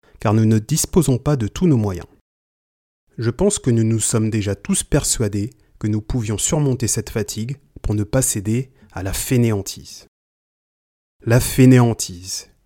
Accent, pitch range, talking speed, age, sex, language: French, 100-135 Hz, 155 wpm, 30-49, male, French